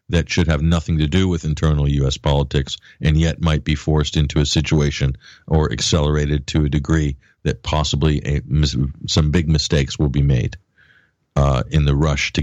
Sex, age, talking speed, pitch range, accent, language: male, 50-69, 180 wpm, 75-85 Hz, American, English